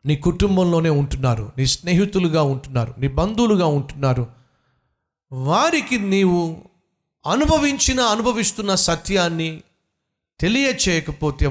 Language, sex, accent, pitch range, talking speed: Telugu, male, native, 140-200 Hz, 80 wpm